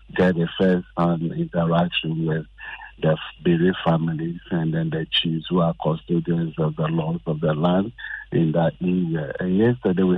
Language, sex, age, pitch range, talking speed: English, male, 50-69, 80-90 Hz, 170 wpm